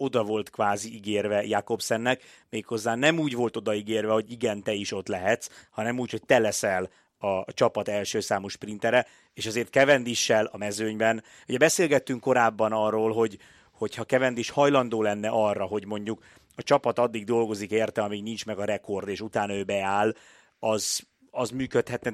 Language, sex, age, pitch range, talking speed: Hungarian, male, 30-49, 105-120 Hz, 165 wpm